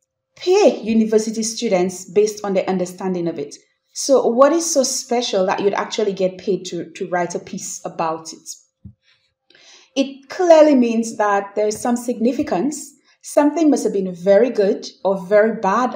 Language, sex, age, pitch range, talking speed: English, female, 30-49, 185-250 Hz, 160 wpm